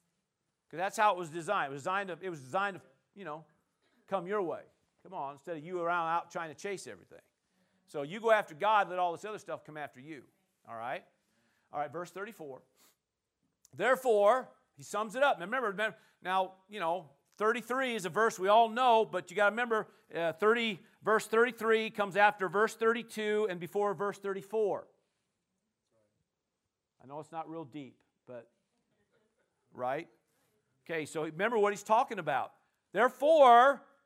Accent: American